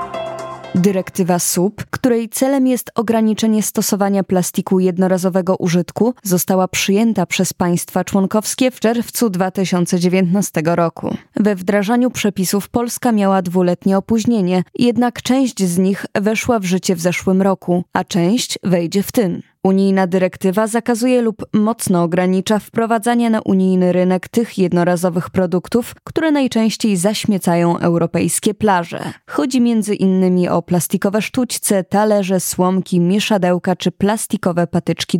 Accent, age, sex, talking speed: native, 20-39, female, 120 wpm